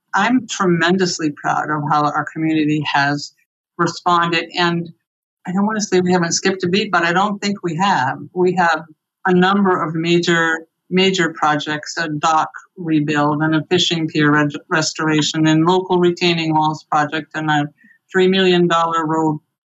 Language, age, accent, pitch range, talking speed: English, 60-79, American, 155-180 Hz, 160 wpm